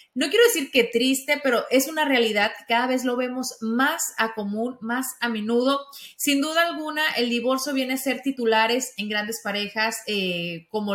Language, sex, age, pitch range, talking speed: Spanish, female, 30-49, 210-255 Hz, 180 wpm